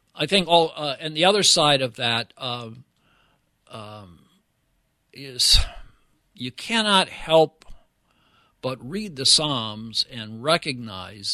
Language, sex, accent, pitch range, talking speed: English, male, American, 110-150 Hz, 115 wpm